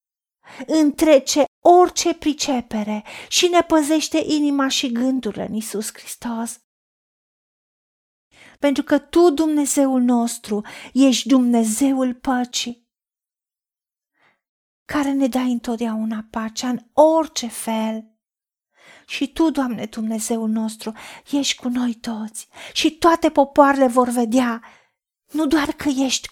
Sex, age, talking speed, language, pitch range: female, 40-59, 105 wpm, Romanian, 230-295 Hz